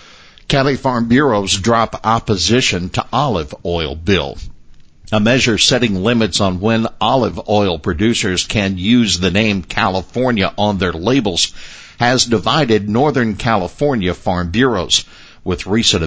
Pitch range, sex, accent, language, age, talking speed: 90-115 Hz, male, American, English, 60-79, 125 wpm